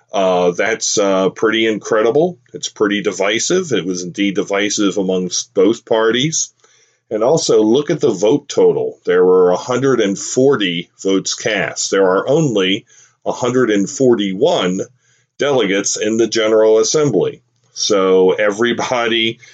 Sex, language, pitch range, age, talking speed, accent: male, English, 95-115 Hz, 40-59, 115 wpm, American